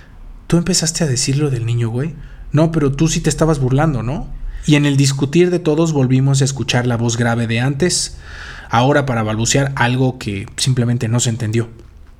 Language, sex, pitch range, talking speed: Spanish, male, 120-145 Hz, 185 wpm